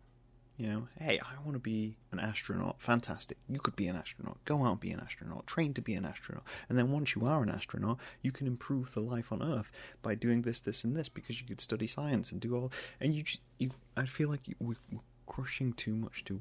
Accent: British